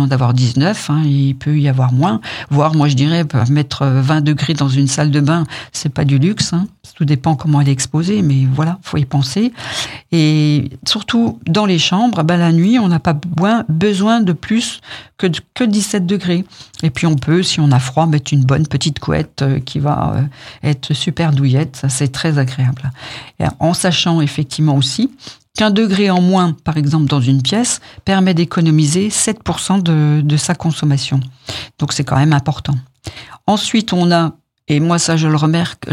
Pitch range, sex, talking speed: 145-180 Hz, female, 180 wpm